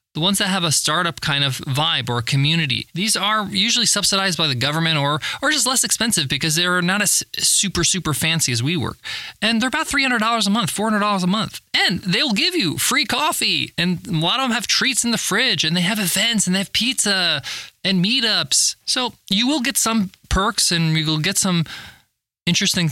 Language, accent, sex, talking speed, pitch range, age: English, American, male, 210 wpm, 160-220 Hz, 20-39